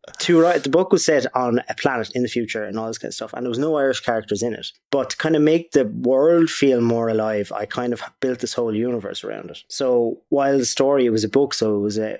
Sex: male